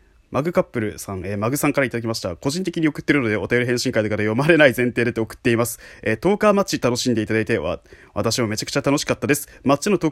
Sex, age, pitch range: male, 20-39, 115-145 Hz